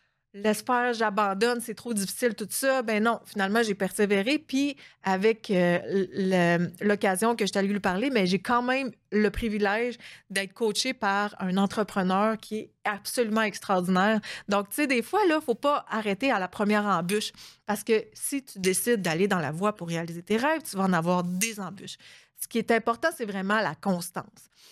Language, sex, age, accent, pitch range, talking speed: French, female, 30-49, Canadian, 195-240 Hz, 190 wpm